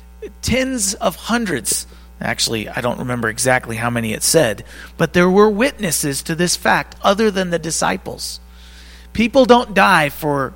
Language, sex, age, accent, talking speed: English, male, 40-59, American, 155 wpm